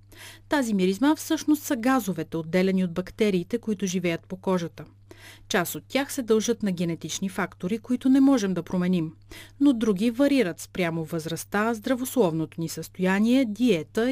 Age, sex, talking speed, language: 30-49, female, 145 wpm, Bulgarian